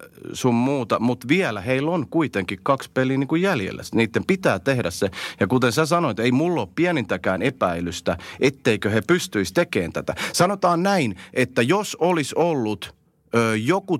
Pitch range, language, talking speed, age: 105-155 Hz, Finnish, 150 wpm, 40-59